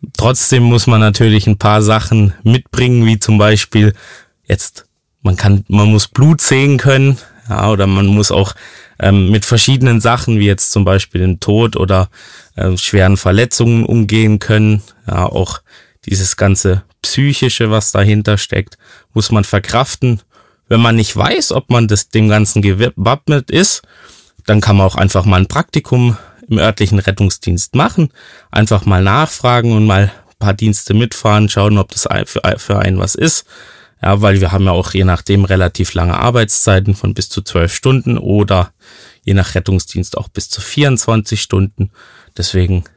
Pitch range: 95-115 Hz